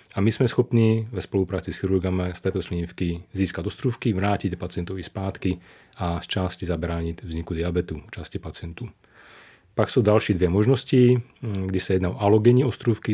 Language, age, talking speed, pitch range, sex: Czech, 30-49, 160 wpm, 90-100 Hz, male